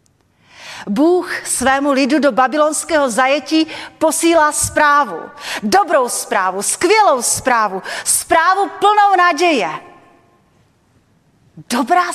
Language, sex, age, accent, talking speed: Czech, female, 40-59, native, 80 wpm